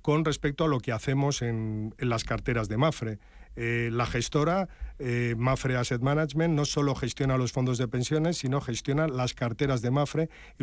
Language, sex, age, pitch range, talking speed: Spanish, male, 40-59, 120-145 Hz, 185 wpm